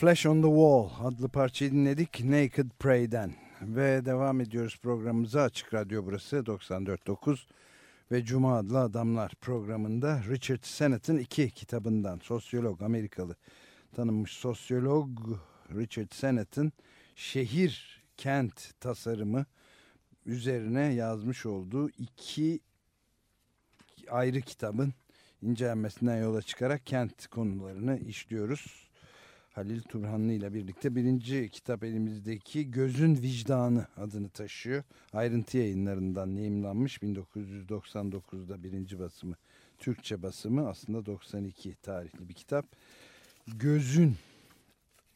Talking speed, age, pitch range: 95 wpm, 60-79, 105-130 Hz